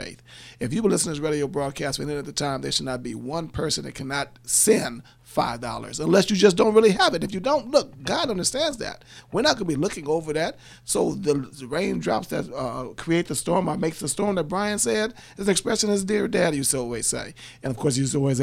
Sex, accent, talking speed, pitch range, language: male, American, 255 wpm, 135-175 Hz, English